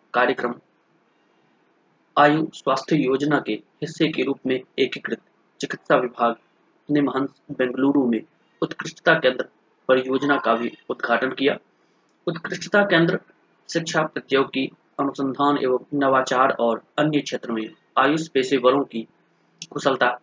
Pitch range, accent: 125-150 Hz, native